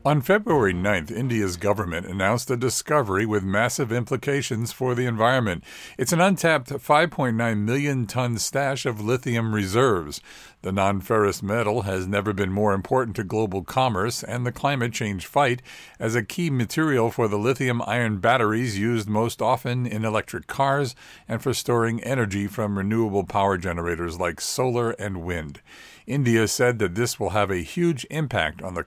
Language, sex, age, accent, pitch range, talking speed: English, male, 50-69, American, 105-135 Hz, 160 wpm